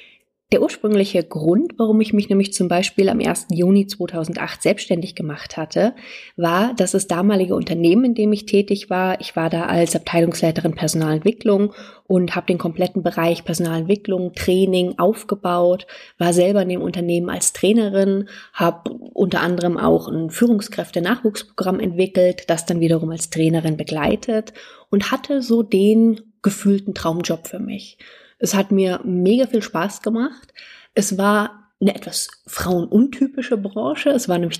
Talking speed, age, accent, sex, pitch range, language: 145 wpm, 20-39, German, female, 175-220 Hz, German